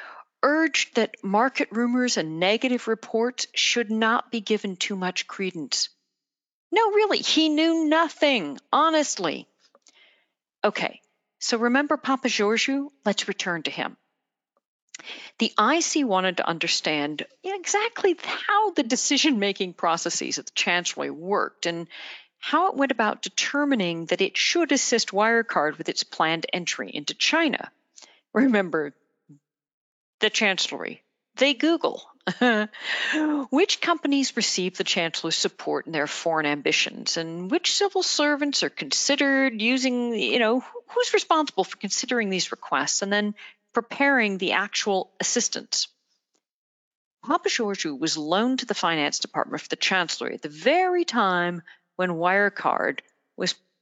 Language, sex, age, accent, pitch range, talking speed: English, female, 40-59, American, 185-290 Hz, 125 wpm